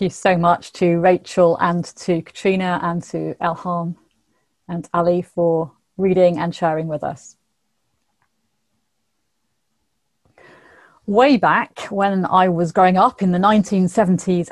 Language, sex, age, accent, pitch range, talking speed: English, female, 30-49, British, 170-210 Hz, 125 wpm